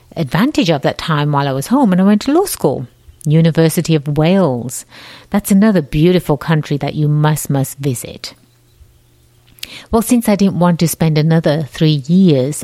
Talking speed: 170 wpm